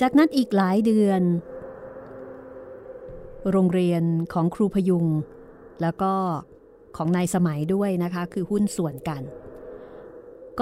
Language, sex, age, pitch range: Thai, female, 30-49, 170-220 Hz